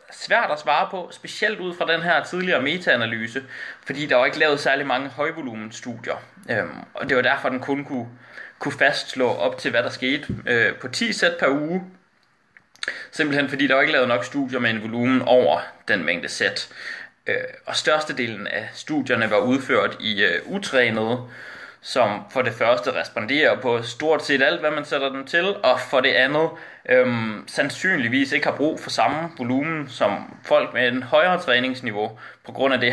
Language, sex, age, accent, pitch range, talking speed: Danish, male, 20-39, native, 120-145 Hz, 190 wpm